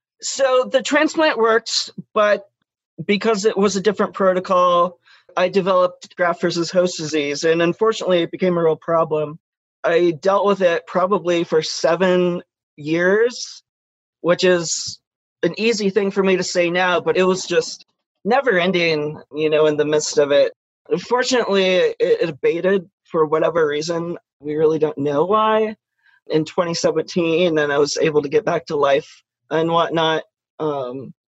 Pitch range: 160-205 Hz